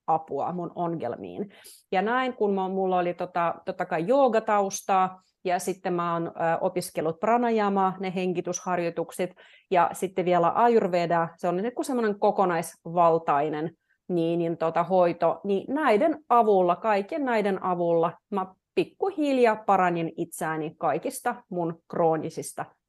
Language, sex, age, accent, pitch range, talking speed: Finnish, female, 30-49, native, 170-220 Hz, 120 wpm